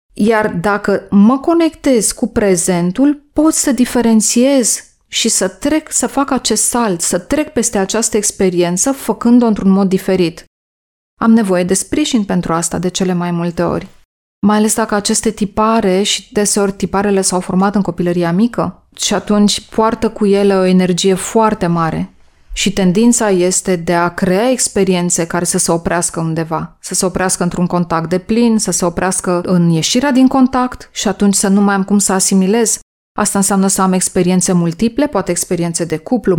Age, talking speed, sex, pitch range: 20-39, 170 wpm, female, 180-220 Hz